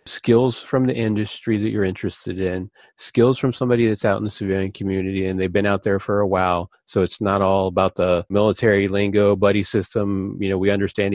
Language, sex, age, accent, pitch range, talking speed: English, male, 30-49, American, 95-110 Hz, 210 wpm